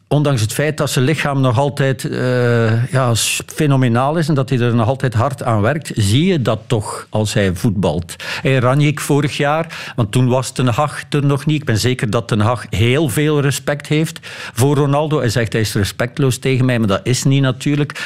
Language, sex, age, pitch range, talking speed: Dutch, male, 50-69, 115-145 Hz, 215 wpm